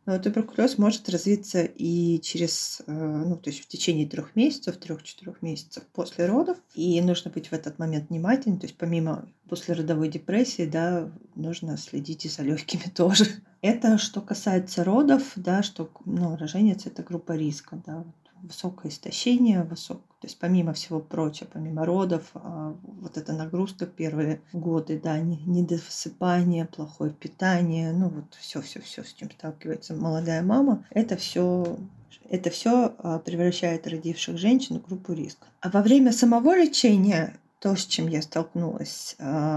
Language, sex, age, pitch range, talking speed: Russian, female, 20-39, 165-200 Hz, 145 wpm